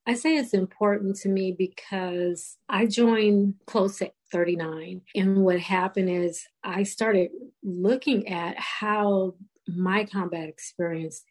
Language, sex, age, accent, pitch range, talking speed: English, female, 40-59, American, 180-210 Hz, 125 wpm